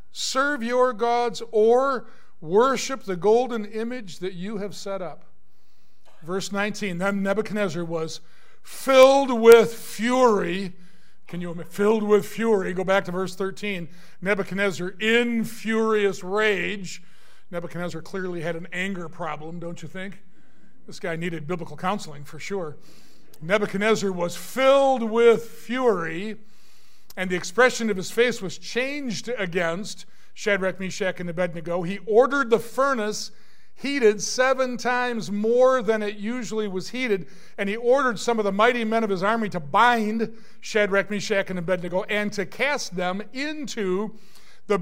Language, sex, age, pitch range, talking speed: English, male, 50-69, 185-235 Hz, 140 wpm